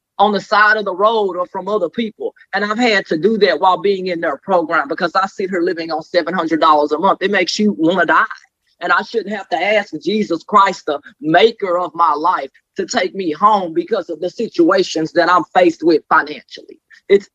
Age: 30-49